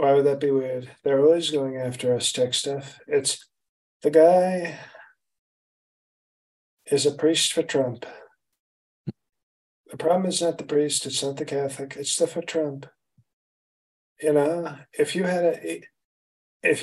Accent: American